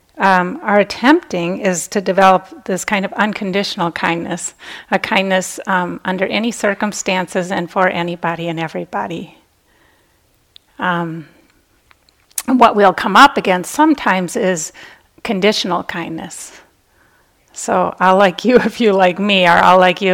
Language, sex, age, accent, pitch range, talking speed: English, female, 40-59, American, 170-205 Hz, 135 wpm